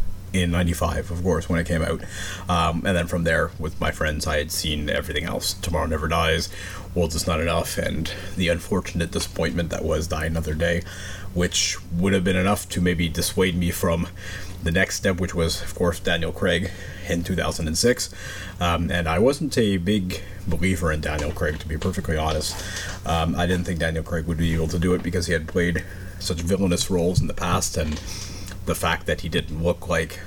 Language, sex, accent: English, male, American